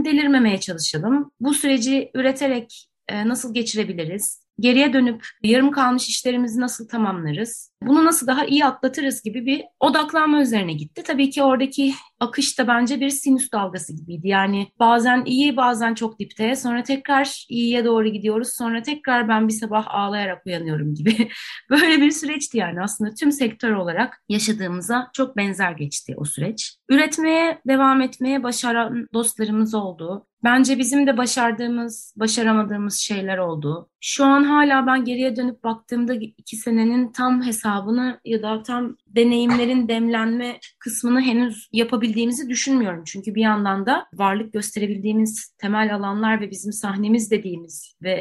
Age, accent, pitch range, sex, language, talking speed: 30-49, native, 210-260 Hz, female, Turkish, 140 wpm